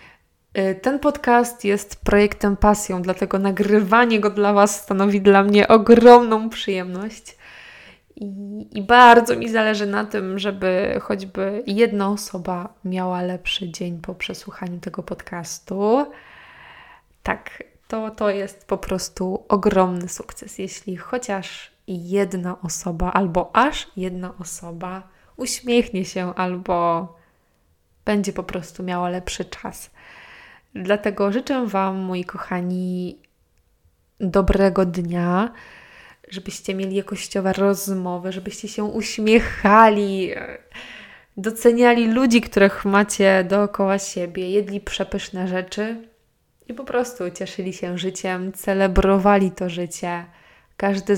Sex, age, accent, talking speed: female, 20-39, native, 105 wpm